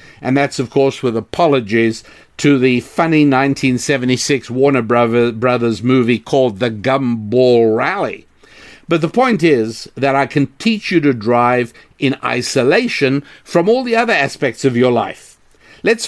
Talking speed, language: 145 wpm, English